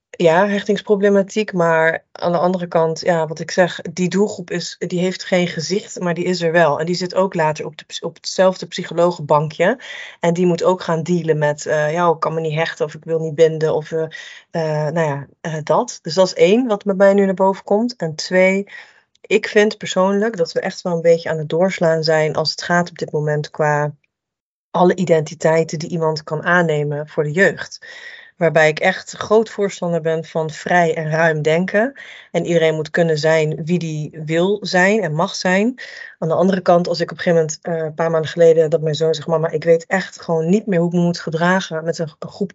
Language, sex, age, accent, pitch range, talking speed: Dutch, female, 30-49, Dutch, 160-190 Hz, 220 wpm